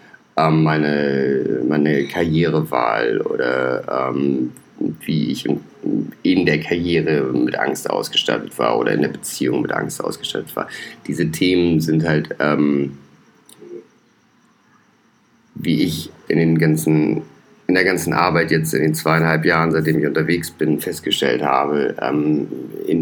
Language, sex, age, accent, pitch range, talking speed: English, male, 40-59, German, 75-80 Hz, 125 wpm